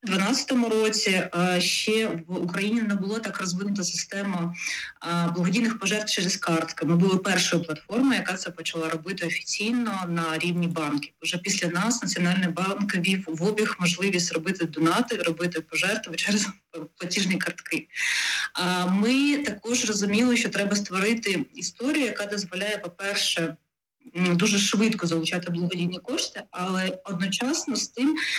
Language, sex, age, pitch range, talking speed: Dutch, female, 20-39, 175-205 Hz, 135 wpm